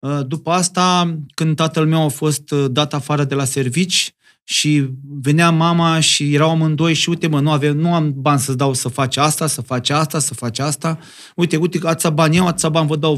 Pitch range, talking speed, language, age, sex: 145-175 Hz, 210 wpm, Romanian, 30-49, male